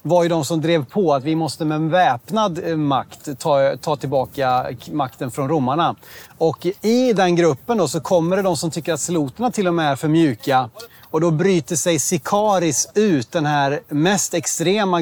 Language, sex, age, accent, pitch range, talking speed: Swedish, male, 30-49, native, 150-180 Hz, 190 wpm